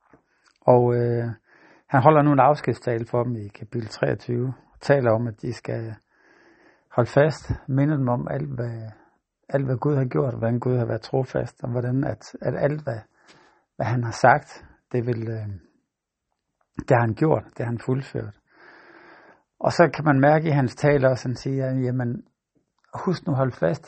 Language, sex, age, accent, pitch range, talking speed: Danish, male, 60-79, native, 115-140 Hz, 185 wpm